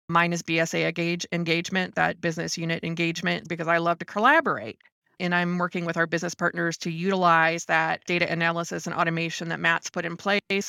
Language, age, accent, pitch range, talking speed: English, 20-39, American, 165-180 Hz, 180 wpm